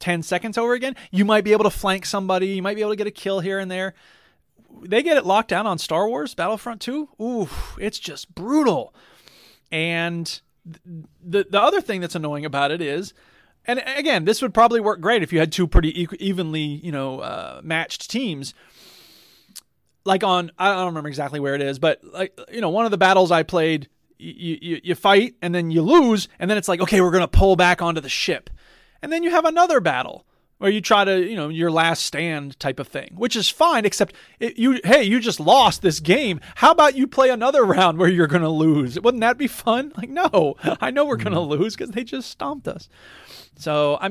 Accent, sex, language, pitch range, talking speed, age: American, male, English, 160-225 Hz, 220 wpm, 30-49